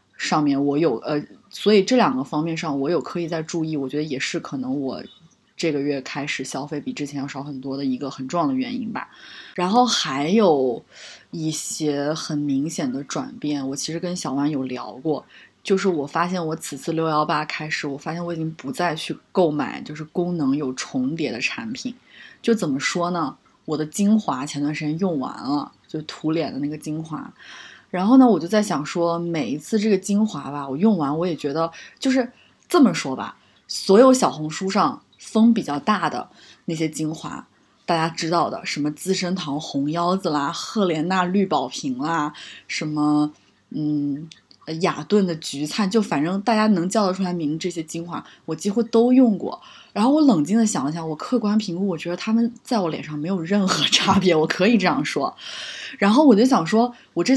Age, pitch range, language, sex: 20-39, 150-220 Hz, Chinese, female